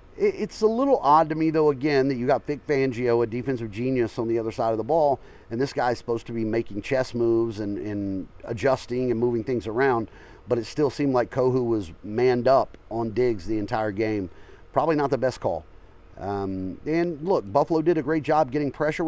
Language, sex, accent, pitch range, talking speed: English, male, American, 105-145 Hz, 215 wpm